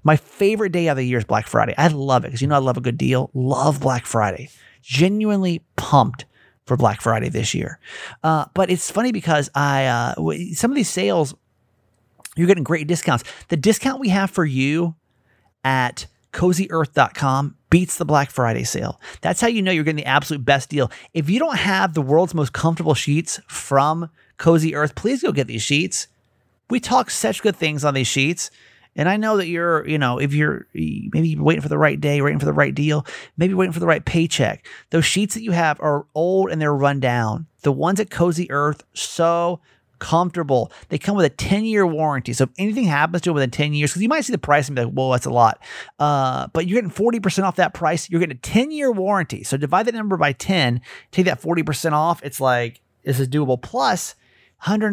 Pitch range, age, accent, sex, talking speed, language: 130-180 Hz, 30-49, American, male, 215 wpm, English